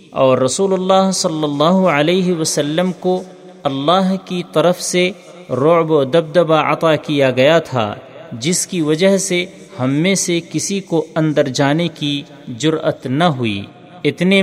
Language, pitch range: Urdu, 150-180 Hz